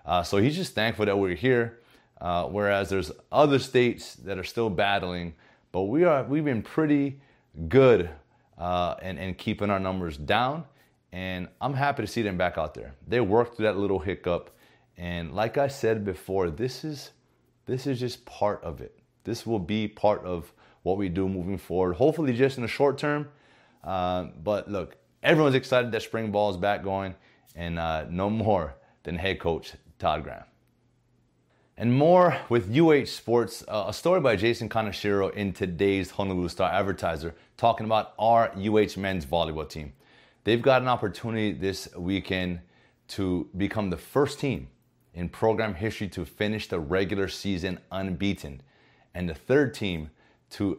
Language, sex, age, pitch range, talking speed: English, male, 30-49, 90-120 Hz, 170 wpm